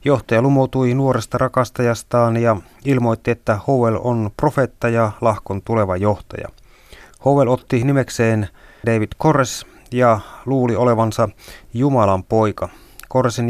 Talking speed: 110 wpm